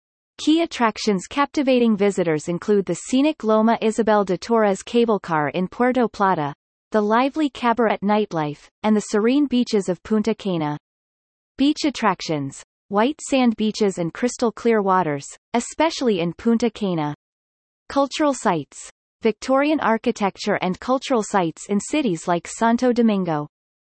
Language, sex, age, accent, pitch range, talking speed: English, female, 30-49, American, 185-245 Hz, 130 wpm